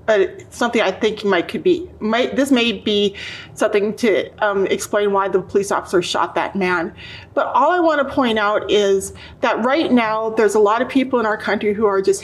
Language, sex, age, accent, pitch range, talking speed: English, female, 30-49, American, 205-250 Hz, 215 wpm